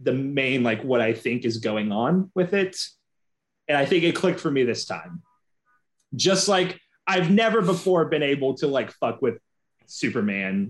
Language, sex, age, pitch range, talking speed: English, male, 30-49, 125-185 Hz, 180 wpm